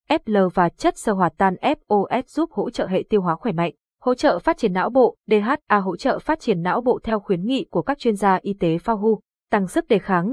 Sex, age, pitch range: female, 20-39, 190-250 Hz